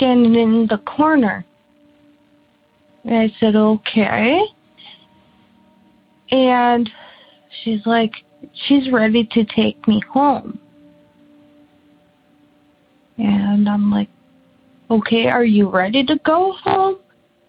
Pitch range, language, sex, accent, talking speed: 210-260 Hz, English, female, American, 90 wpm